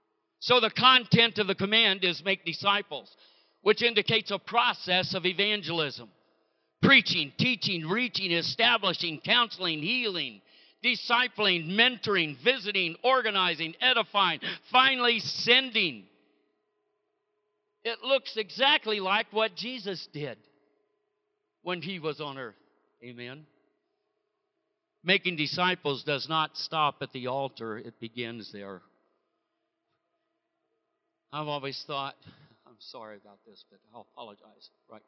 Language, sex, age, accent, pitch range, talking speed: English, male, 60-79, American, 140-235 Hz, 110 wpm